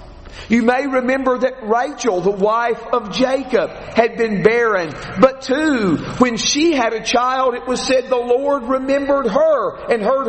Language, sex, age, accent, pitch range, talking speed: English, male, 50-69, American, 170-260 Hz, 165 wpm